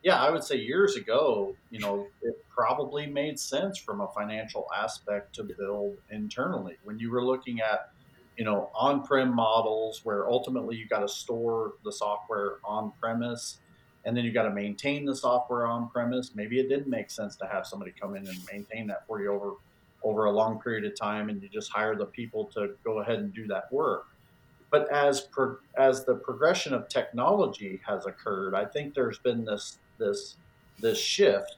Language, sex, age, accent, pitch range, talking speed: English, male, 40-59, American, 105-135 Hz, 190 wpm